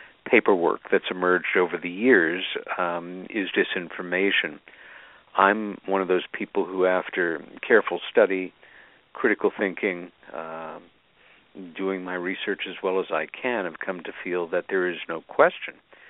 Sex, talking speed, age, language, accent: male, 140 wpm, 50-69, English, American